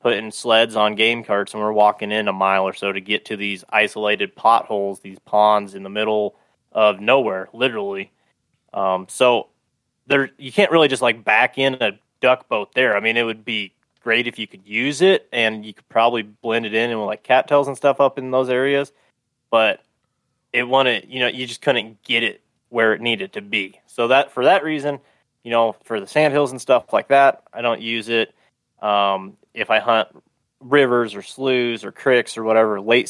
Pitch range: 105-130 Hz